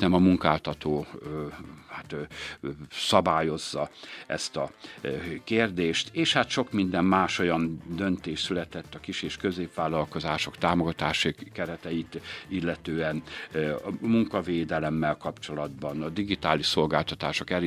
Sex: male